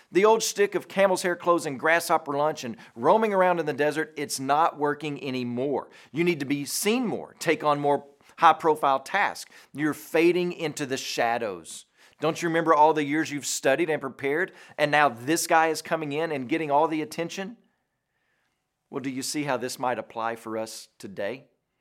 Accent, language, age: American, English, 40-59